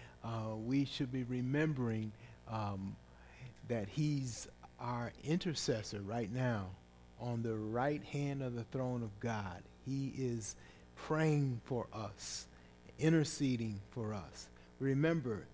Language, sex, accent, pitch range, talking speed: English, male, American, 105-140 Hz, 115 wpm